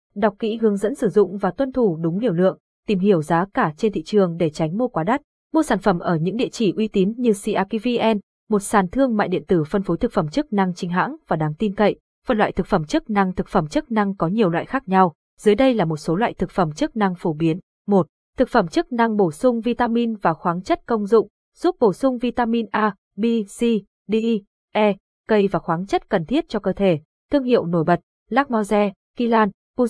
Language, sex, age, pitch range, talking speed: Vietnamese, female, 20-39, 190-235 Hz, 235 wpm